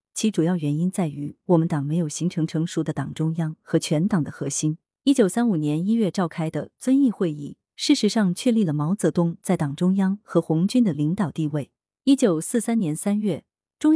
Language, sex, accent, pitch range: Chinese, female, native, 155-215 Hz